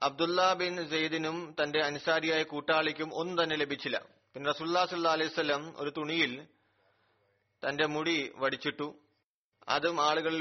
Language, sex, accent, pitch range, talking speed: Malayalam, male, native, 135-160 Hz, 115 wpm